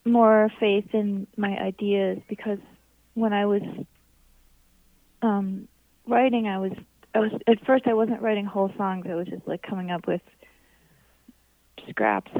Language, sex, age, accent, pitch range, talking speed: English, female, 30-49, American, 185-225 Hz, 145 wpm